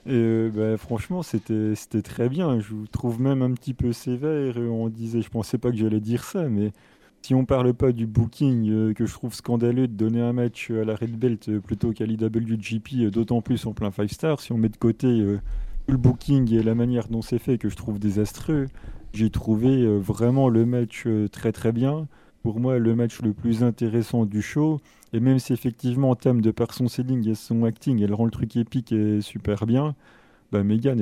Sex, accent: male, French